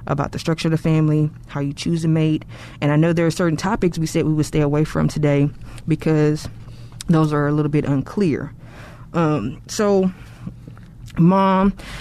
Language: English